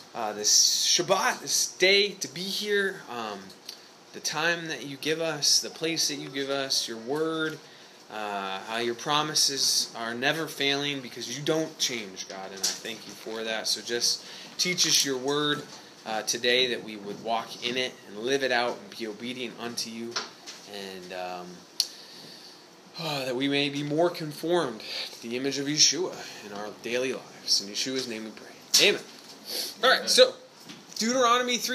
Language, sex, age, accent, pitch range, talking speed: English, male, 20-39, American, 120-180 Hz, 175 wpm